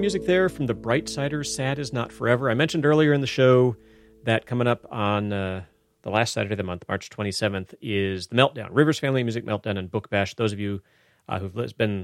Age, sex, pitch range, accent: 30-49, male, 105-150 Hz, American